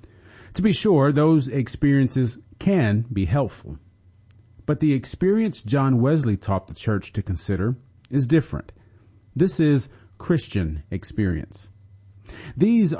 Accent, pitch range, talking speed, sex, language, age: American, 100-135 Hz, 115 wpm, male, English, 40-59